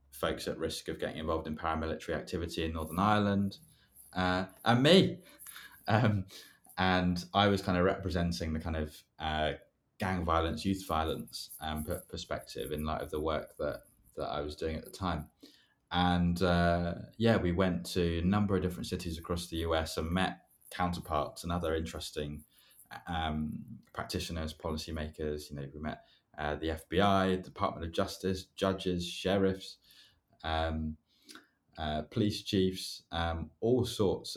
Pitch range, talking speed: 75-95 Hz, 155 wpm